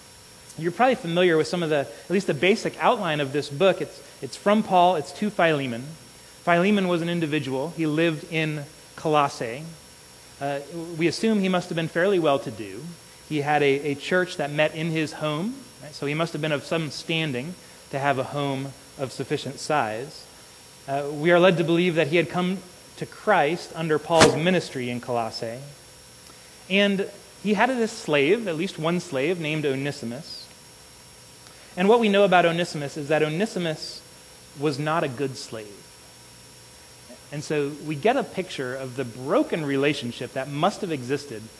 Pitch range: 130-175 Hz